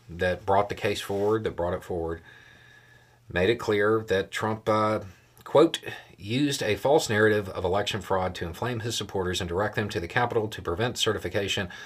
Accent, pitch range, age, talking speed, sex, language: American, 90-120 Hz, 40-59, 180 wpm, male, English